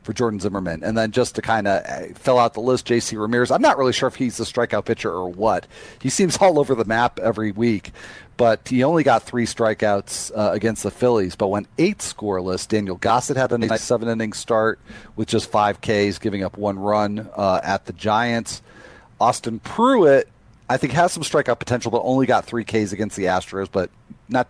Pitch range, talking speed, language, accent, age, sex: 105-125 Hz, 210 wpm, English, American, 40-59, male